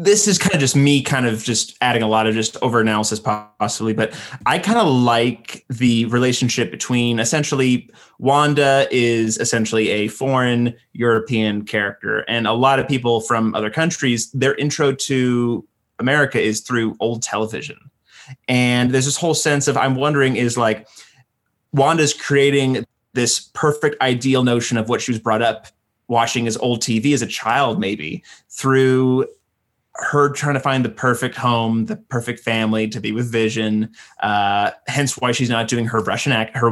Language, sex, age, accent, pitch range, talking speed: English, male, 20-39, American, 110-135 Hz, 170 wpm